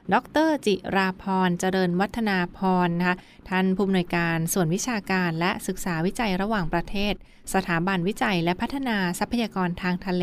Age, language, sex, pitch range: 20-39, Thai, female, 175-195 Hz